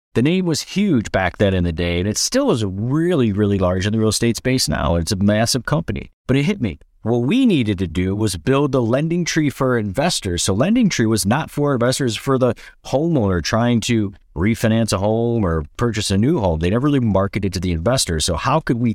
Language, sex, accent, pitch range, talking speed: English, male, American, 95-130 Hz, 230 wpm